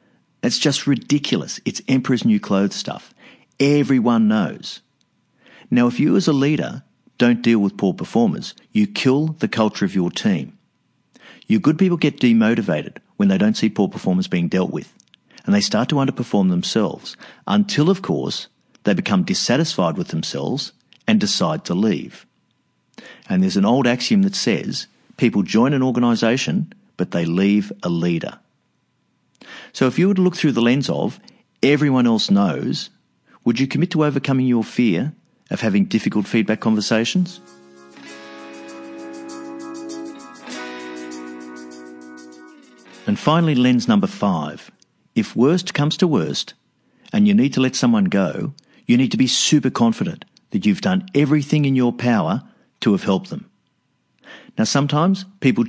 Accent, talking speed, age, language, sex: Australian, 150 wpm, 50-69, English, male